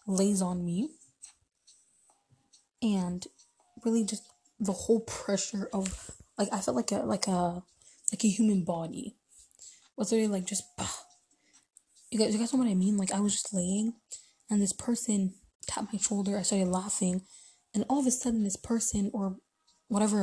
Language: English